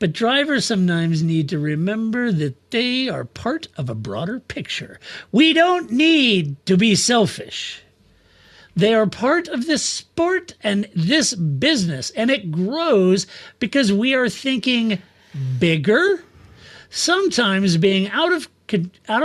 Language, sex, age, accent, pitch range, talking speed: English, male, 50-69, American, 160-240 Hz, 130 wpm